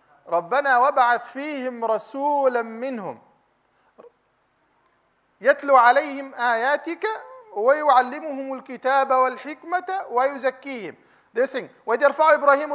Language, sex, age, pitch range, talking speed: English, male, 40-59, 245-310 Hz, 70 wpm